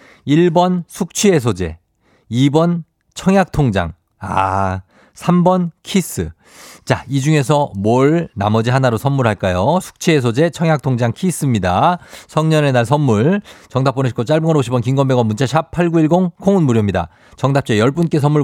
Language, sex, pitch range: Korean, male, 105-145 Hz